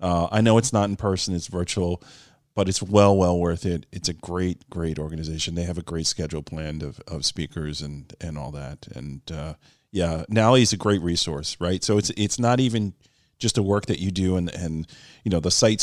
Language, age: English, 40-59